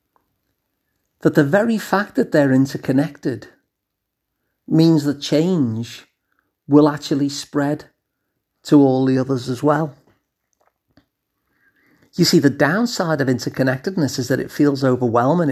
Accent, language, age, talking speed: British, English, 40-59, 115 wpm